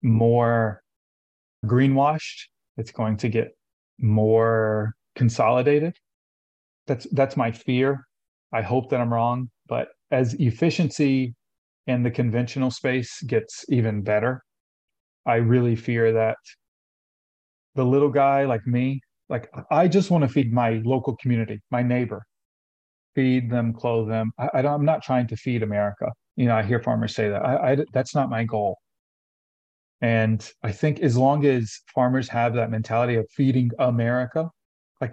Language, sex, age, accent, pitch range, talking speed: English, male, 30-49, American, 110-135 Hz, 145 wpm